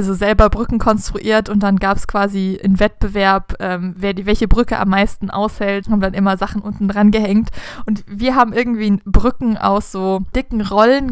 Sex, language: female, German